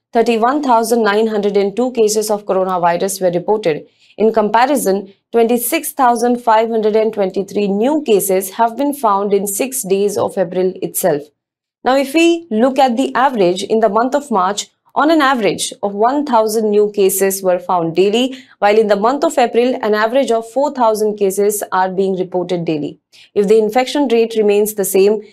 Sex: female